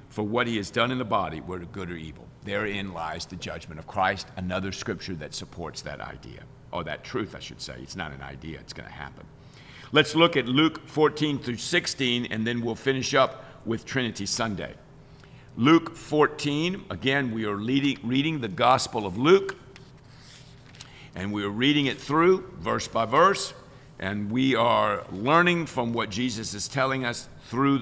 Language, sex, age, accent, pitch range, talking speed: English, male, 50-69, American, 110-145 Hz, 180 wpm